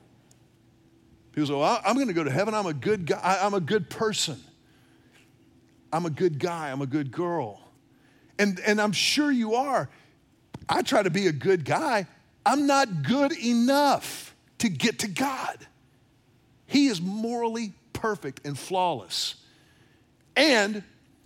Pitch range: 150-210 Hz